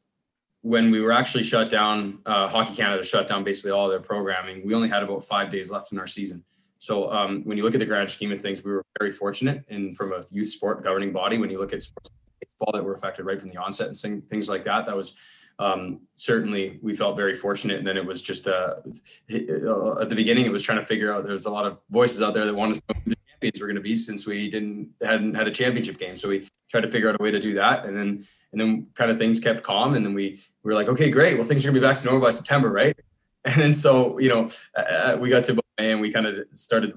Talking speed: 265 wpm